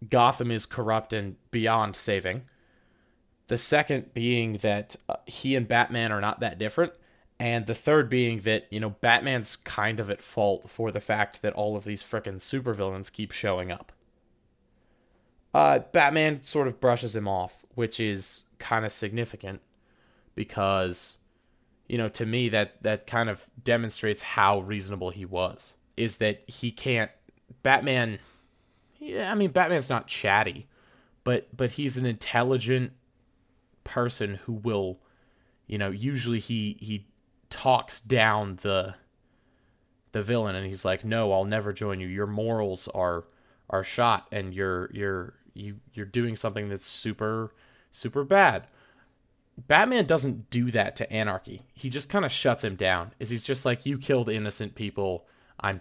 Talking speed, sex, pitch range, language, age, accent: 155 wpm, male, 100-125 Hz, English, 20-39, American